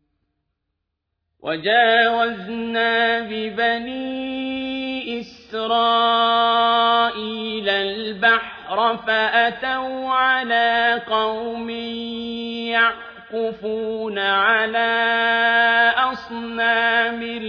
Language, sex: Arabic, male